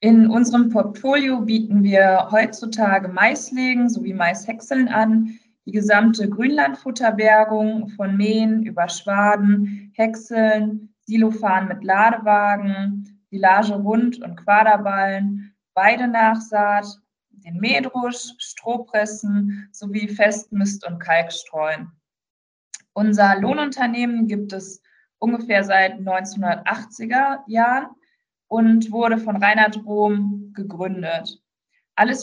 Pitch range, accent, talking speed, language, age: 195-225 Hz, German, 90 wpm, German, 20-39